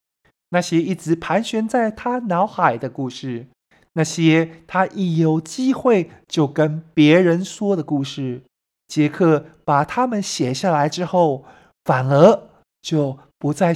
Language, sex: Chinese, male